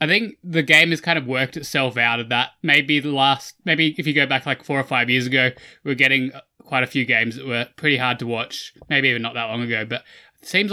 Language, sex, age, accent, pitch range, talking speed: English, male, 20-39, Australian, 120-145 Hz, 270 wpm